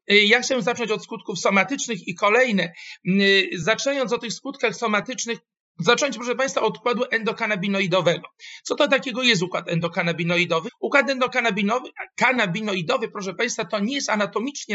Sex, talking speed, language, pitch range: male, 135 wpm, Polish, 190-230 Hz